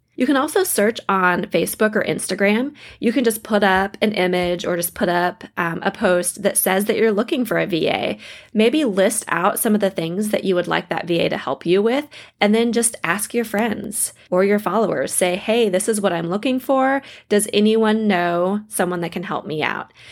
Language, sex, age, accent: English, female, 20-39, American